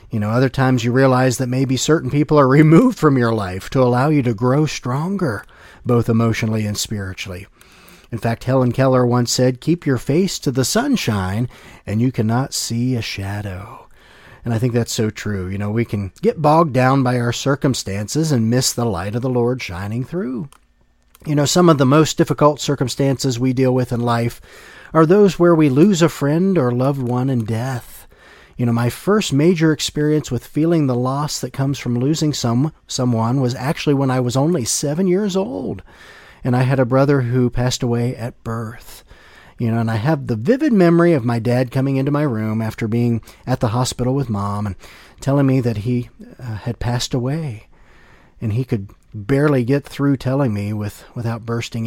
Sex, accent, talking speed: male, American, 195 wpm